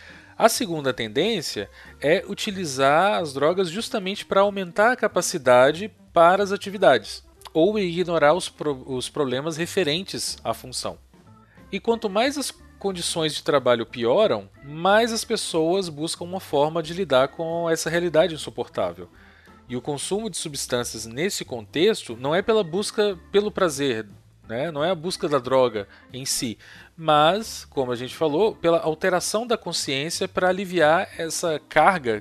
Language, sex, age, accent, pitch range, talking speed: Portuguese, male, 40-59, Brazilian, 125-190 Hz, 145 wpm